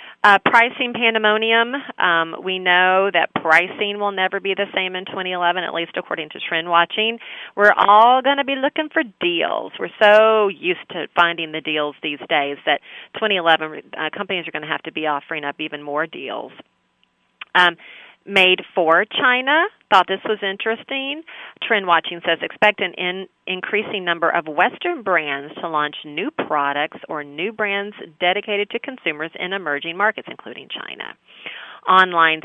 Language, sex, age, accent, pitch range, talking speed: English, female, 40-59, American, 170-230 Hz, 165 wpm